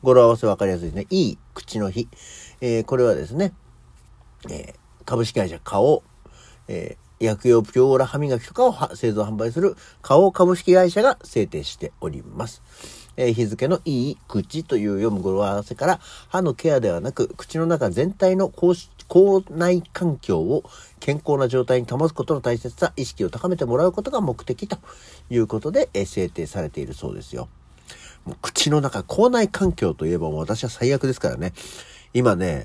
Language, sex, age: Japanese, male, 50-69